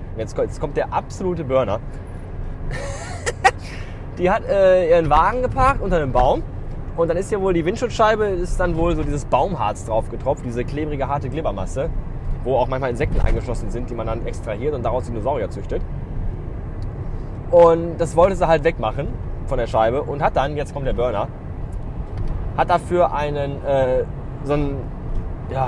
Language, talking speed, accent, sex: German, 165 wpm, German, male